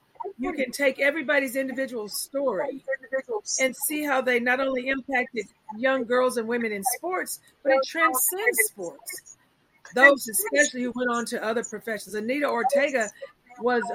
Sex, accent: female, American